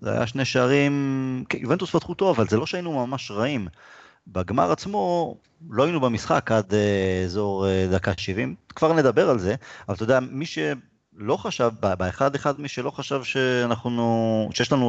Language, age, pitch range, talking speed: Hebrew, 30-49, 105-140 Hz, 175 wpm